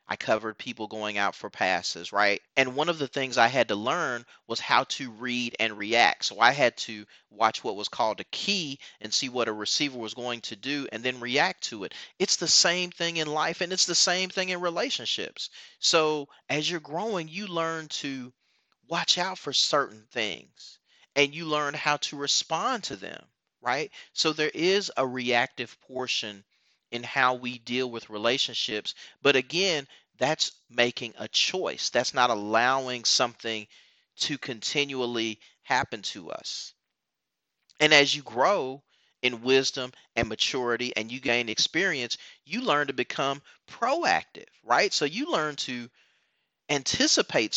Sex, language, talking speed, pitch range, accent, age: male, English, 165 wpm, 115-155 Hz, American, 30-49